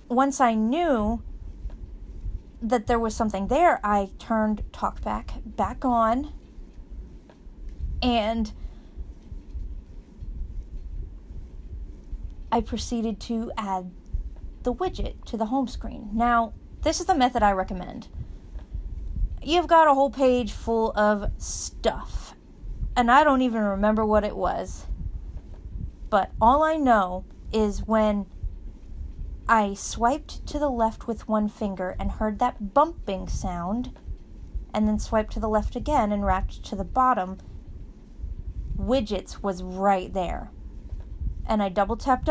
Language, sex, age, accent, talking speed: English, female, 30-49, American, 120 wpm